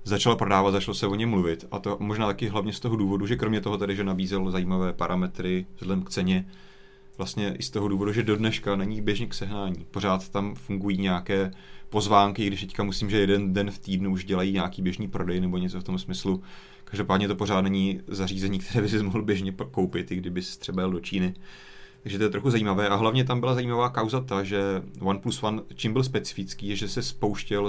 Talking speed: 220 wpm